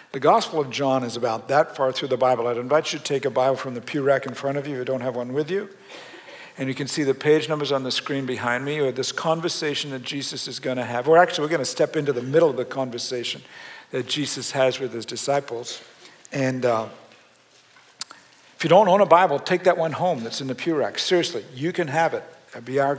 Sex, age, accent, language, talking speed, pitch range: male, 60-79, American, English, 255 wpm, 130-165 Hz